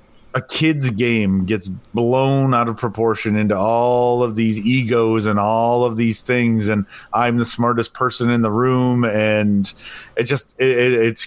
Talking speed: 160 wpm